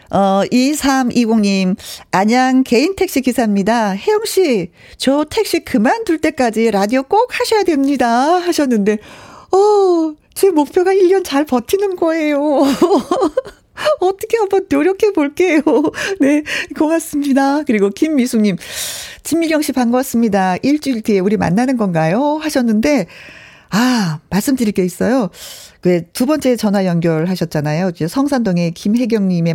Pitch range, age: 185-290 Hz, 40-59